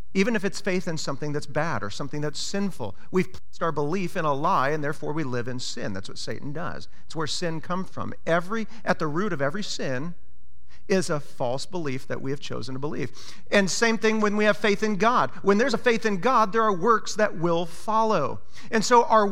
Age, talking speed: 40-59, 235 wpm